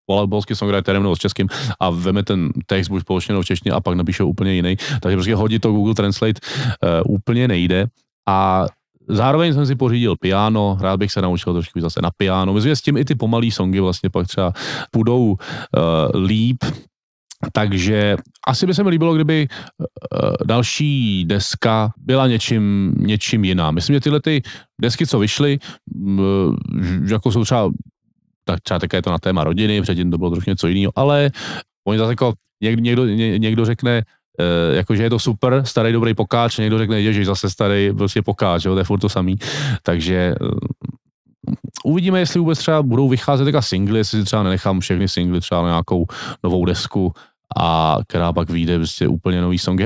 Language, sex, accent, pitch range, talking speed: Czech, male, native, 95-120 Hz, 185 wpm